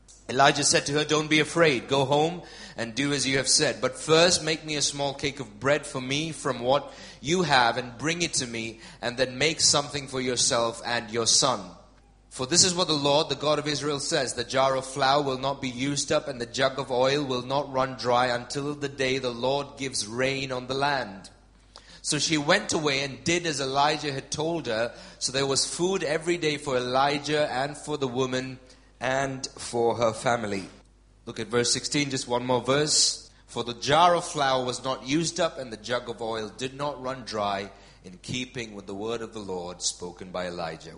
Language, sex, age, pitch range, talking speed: English, male, 30-49, 105-140 Hz, 215 wpm